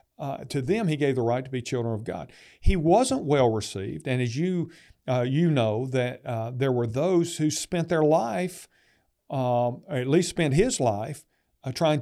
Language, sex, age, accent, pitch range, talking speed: English, male, 50-69, American, 130-180 Hz, 190 wpm